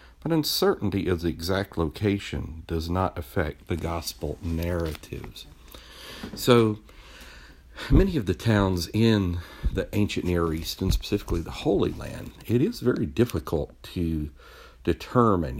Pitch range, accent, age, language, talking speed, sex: 75-100 Hz, American, 60-79, English, 125 wpm, male